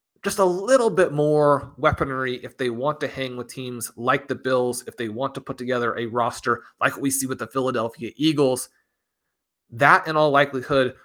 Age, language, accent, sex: 30-49, English, American, male